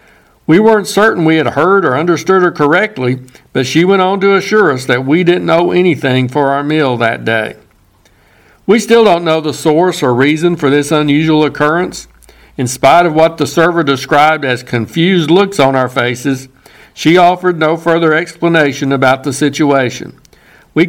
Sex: male